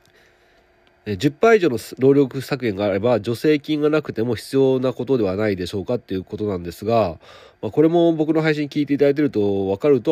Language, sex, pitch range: Japanese, male, 105-145 Hz